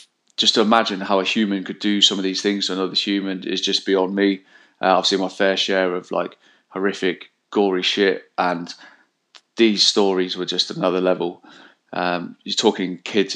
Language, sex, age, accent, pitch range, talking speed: English, male, 20-39, British, 95-105 Hz, 185 wpm